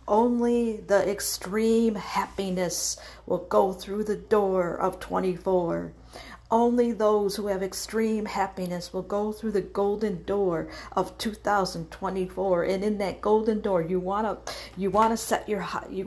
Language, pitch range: English, 185-215 Hz